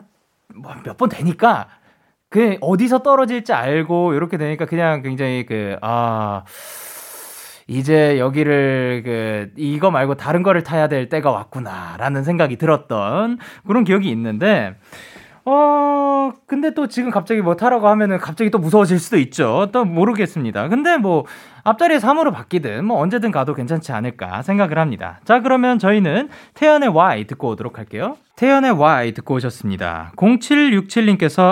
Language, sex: Korean, male